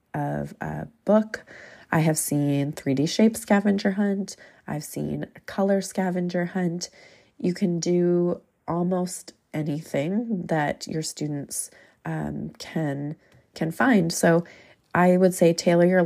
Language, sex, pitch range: English, female, 150-180 Hz